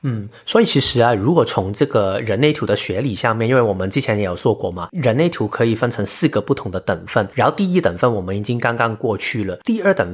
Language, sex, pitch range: Chinese, male, 110-145 Hz